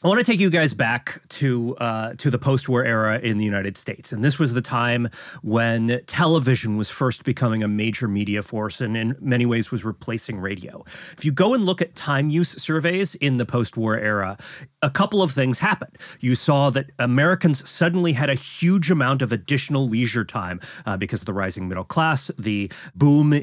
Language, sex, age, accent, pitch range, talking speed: English, male, 30-49, American, 115-150 Hz, 200 wpm